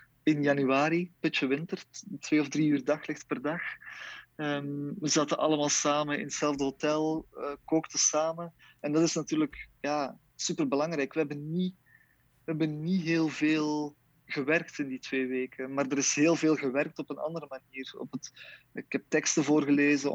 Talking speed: 150 wpm